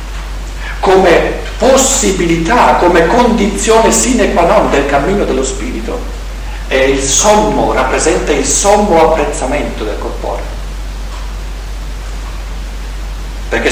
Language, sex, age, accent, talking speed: Italian, male, 50-69, native, 90 wpm